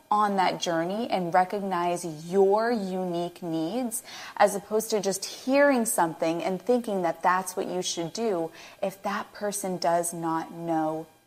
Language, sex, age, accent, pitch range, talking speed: English, female, 20-39, American, 175-240 Hz, 150 wpm